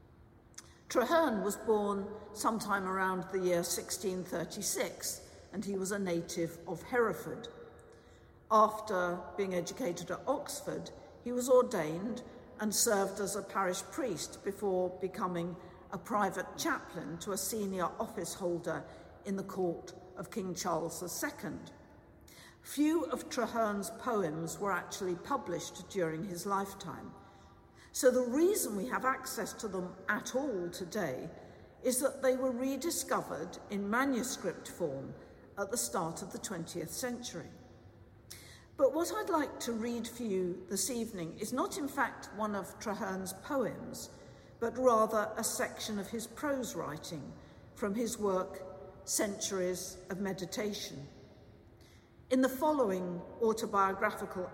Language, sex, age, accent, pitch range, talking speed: English, female, 50-69, British, 185-240 Hz, 130 wpm